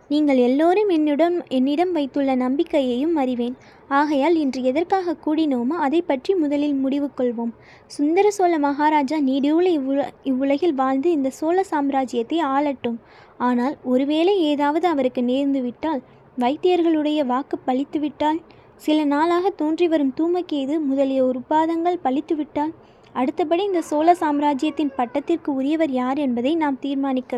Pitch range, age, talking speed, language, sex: 265-330 Hz, 20-39, 115 wpm, Tamil, female